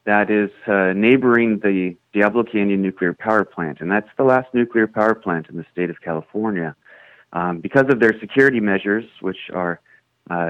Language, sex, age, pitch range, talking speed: English, male, 30-49, 95-115 Hz, 175 wpm